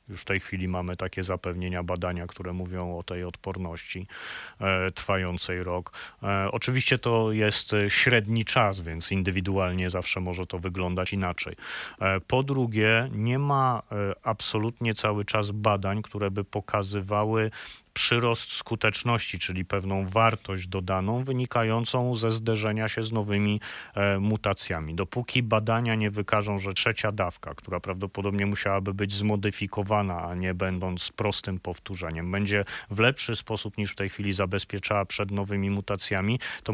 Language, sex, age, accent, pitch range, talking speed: Polish, male, 30-49, native, 95-110 Hz, 130 wpm